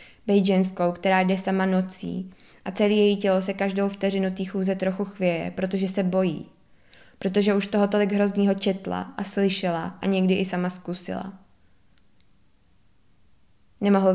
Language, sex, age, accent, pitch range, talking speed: Czech, female, 20-39, native, 170-195 Hz, 135 wpm